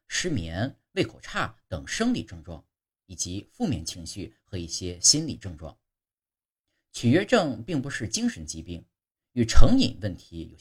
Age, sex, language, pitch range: 50-69, male, Chinese, 90-130 Hz